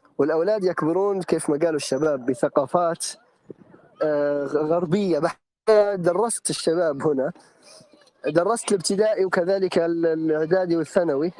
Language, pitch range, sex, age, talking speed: Arabic, 160-210 Hz, male, 20-39, 90 wpm